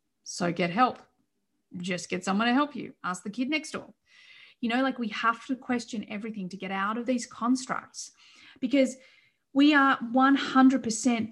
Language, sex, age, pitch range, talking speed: English, female, 30-49, 215-280 Hz, 170 wpm